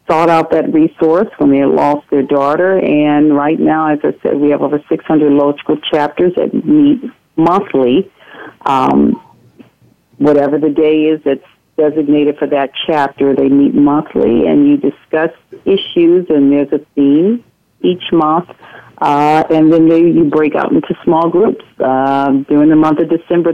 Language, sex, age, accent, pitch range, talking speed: English, female, 50-69, American, 140-160 Hz, 160 wpm